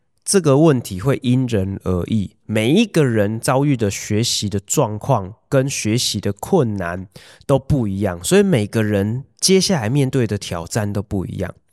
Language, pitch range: Chinese, 100-135 Hz